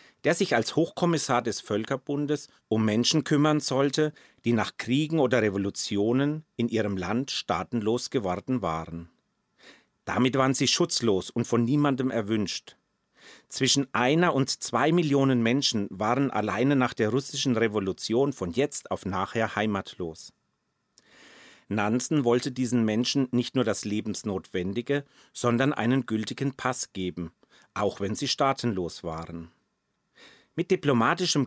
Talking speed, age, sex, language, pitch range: 125 wpm, 40-59, male, German, 110-145 Hz